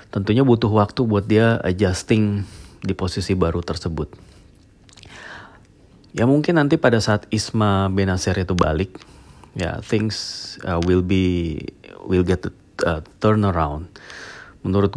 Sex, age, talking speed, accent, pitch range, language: male, 30-49, 120 wpm, native, 85-105 Hz, Indonesian